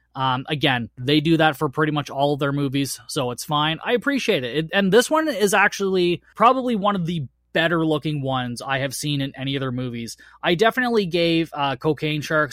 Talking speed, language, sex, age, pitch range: 210 wpm, English, male, 20-39, 135-175 Hz